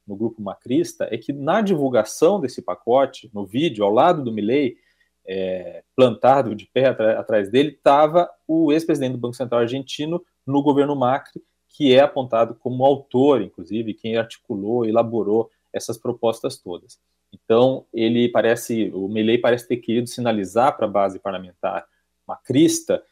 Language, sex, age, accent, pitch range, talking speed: Portuguese, male, 40-59, Brazilian, 115-165 Hz, 150 wpm